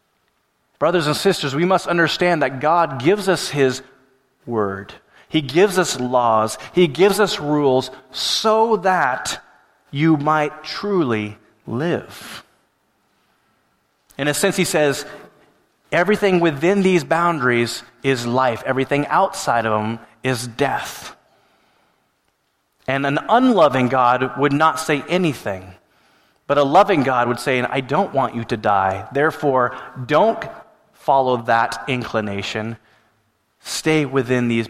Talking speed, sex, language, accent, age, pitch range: 125 wpm, male, English, American, 30-49, 120-160 Hz